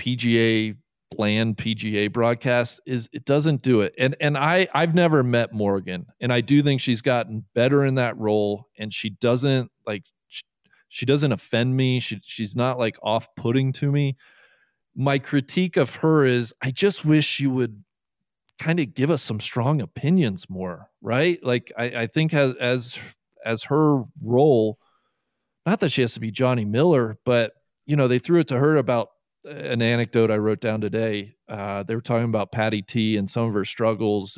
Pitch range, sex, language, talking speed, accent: 110-150 Hz, male, English, 185 wpm, American